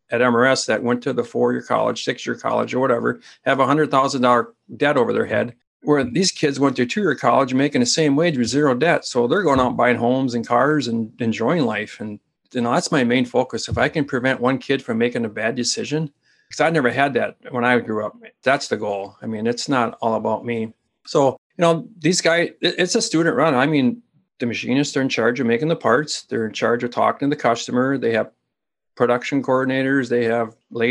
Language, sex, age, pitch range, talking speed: English, male, 40-59, 120-145 Hz, 225 wpm